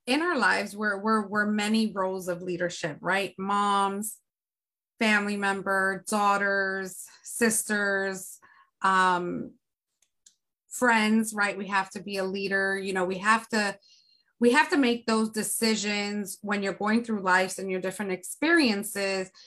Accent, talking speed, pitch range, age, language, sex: American, 140 wpm, 190-220 Hz, 30-49, English, female